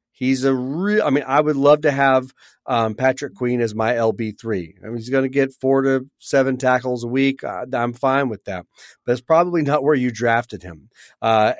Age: 40-59